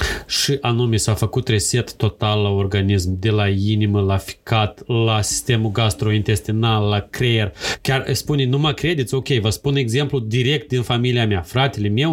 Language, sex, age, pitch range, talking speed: Romanian, male, 30-49, 105-140 Hz, 165 wpm